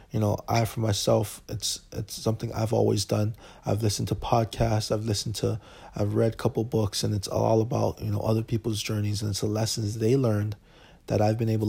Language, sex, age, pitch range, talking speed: English, male, 20-39, 105-120 Hz, 215 wpm